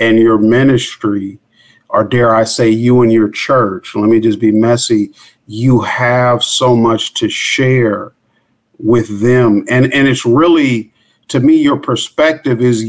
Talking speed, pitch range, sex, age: 155 wpm, 115-135 Hz, male, 50-69